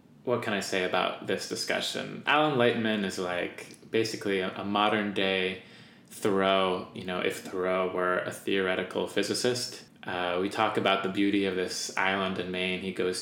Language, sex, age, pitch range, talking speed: English, male, 20-39, 95-110 Hz, 170 wpm